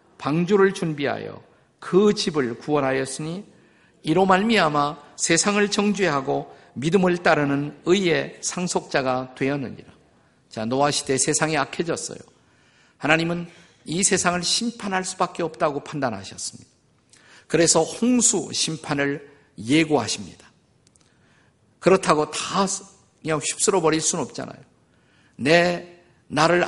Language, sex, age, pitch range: Korean, male, 50-69, 140-190 Hz